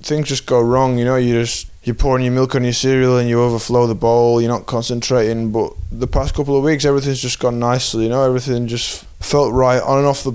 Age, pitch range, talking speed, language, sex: 20-39, 115-130 Hz, 250 wpm, English, male